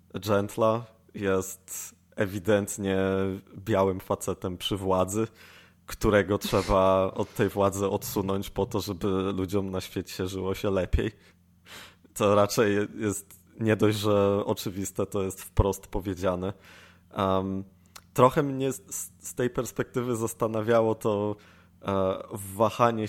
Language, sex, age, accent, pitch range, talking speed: Polish, male, 20-39, native, 95-105 Hz, 105 wpm